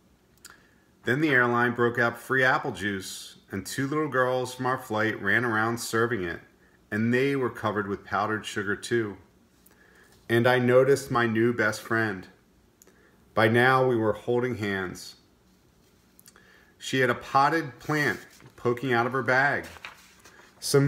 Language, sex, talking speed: English, male, 145 wpm